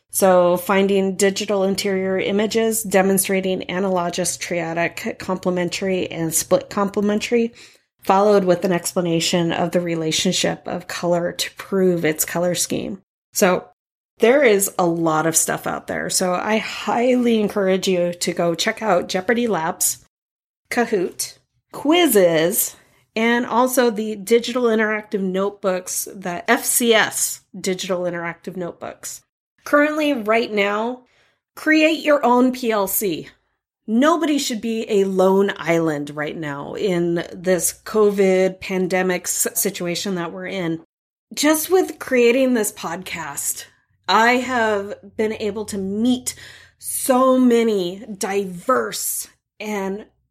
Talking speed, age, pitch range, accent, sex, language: 115 wpm, 30-49, 180-230 Hz, American, female, English